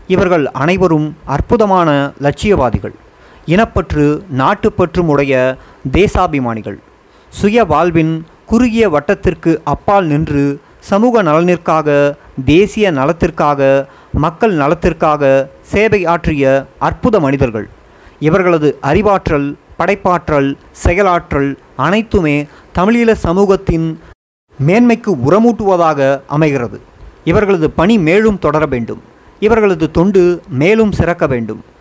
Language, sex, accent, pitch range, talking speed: Tamil, male, native, 140-185 Hz, 80 wpm